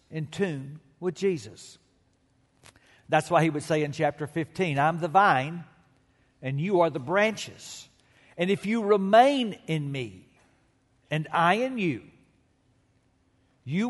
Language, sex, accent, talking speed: English, male, American, 135 wpm